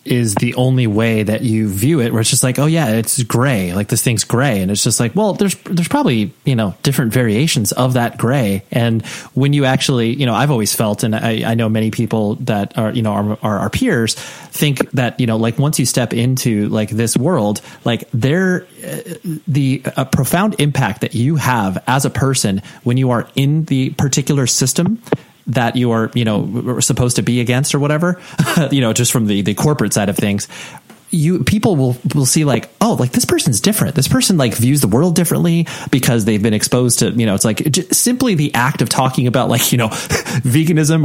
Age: 30-49